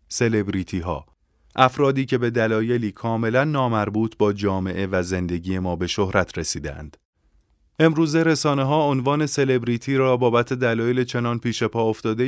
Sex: male